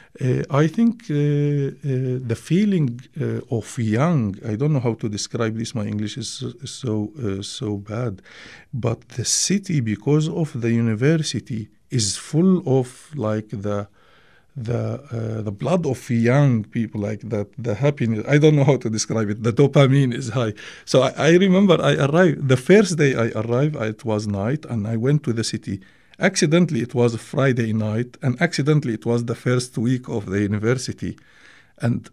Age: 50-69